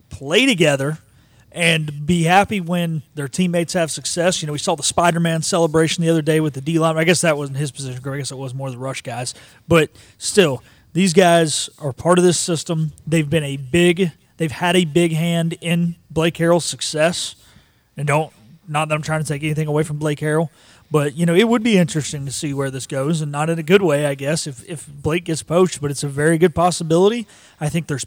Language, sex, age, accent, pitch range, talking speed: English, male, 30-49, American, 140-170 Hz, 225 wpm